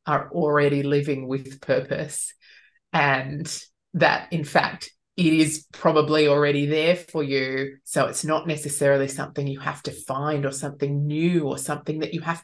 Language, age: English, 20-39